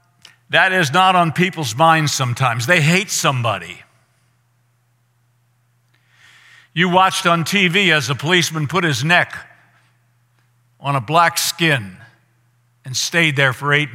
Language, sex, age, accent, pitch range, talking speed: English, male, 60-79, American, 120-175 Hz, 125 wpm